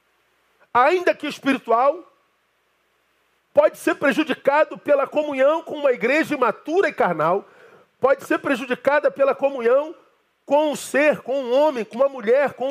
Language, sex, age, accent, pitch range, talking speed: Portuguese, male, 40-59, Brazilian, 240-315 Hz, 140 wpm